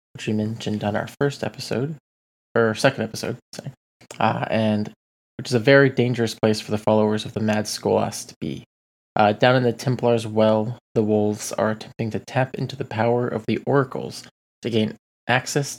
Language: English